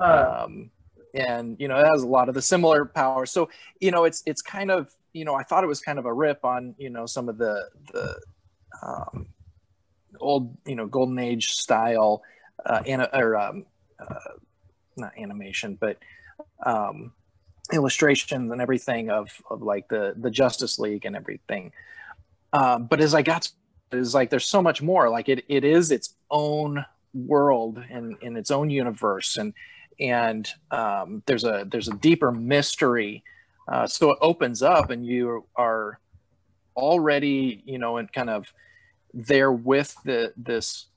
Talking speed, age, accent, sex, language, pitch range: 165 wpm, 30-49, American, male, English, 110-140 Hz